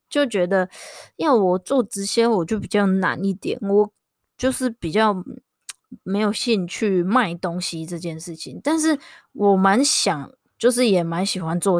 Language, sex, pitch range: Chinese, female, 180-235 Hz